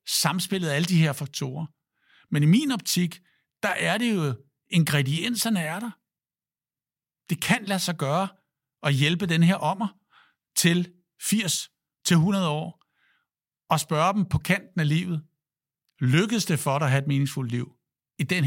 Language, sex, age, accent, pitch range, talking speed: Danish, male, 60-79, native, 130-160 Hz, 160 wpm